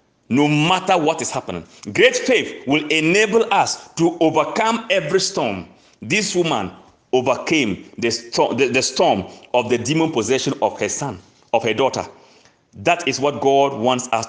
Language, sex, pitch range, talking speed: English, male, 140-210 Hz, 150 wpm